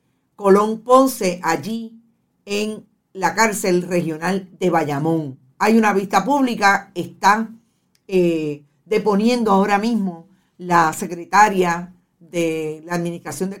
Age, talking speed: 50-69, 105 wpm